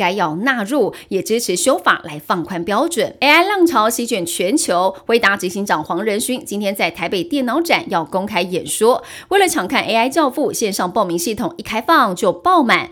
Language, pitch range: Chinese, 190-280 Hz